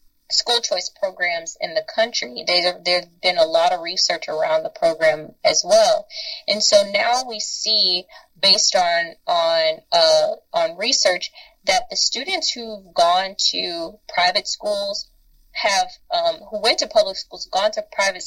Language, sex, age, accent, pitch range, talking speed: English, female, 20-39, American, 215-330 Hz, 160 wpm